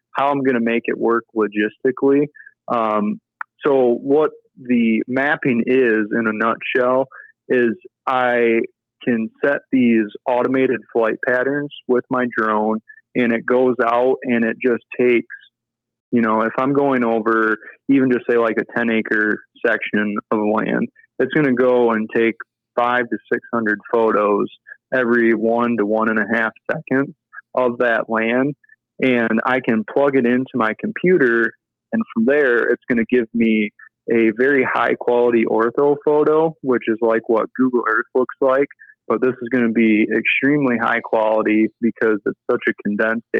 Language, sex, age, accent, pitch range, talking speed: English, male, 30-49, American, 115-130 Hz, 160 wpm